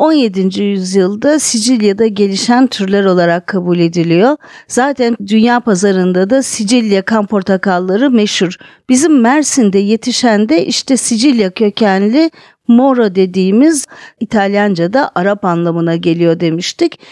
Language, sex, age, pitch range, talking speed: Turkish, female, 50-69, 195-270 Hz, 105 wpm